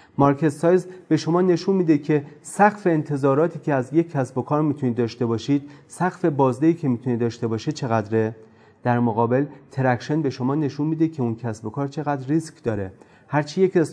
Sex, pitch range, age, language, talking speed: male, 120-160 Hz, 30-49, Persian, 190 wpm